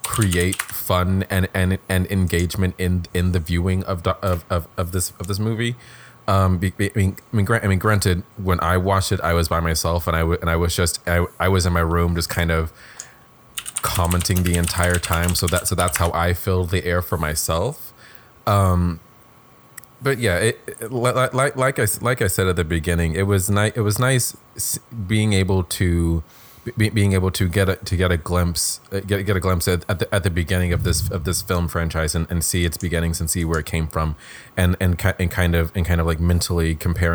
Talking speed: 225 wpm